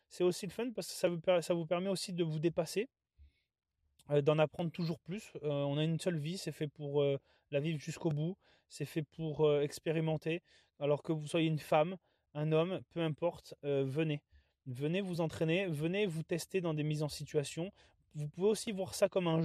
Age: 20-39